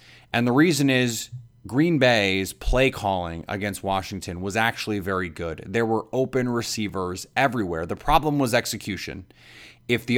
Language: English